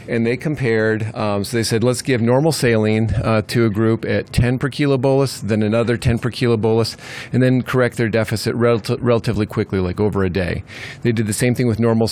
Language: English